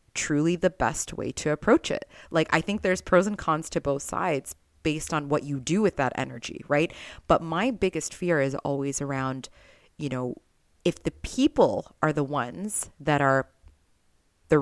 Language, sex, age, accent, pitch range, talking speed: English, female, 30-49, American, 140-175 Hz, 180 wpm